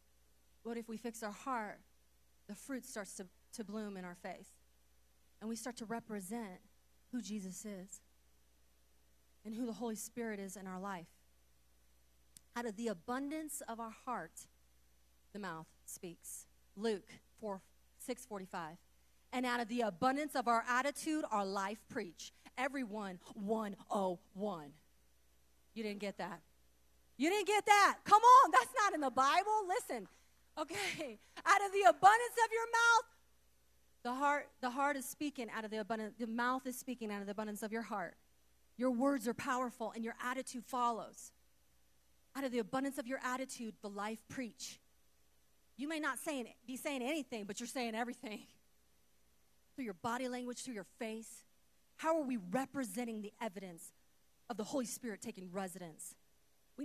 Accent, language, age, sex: American, English, 30-49, female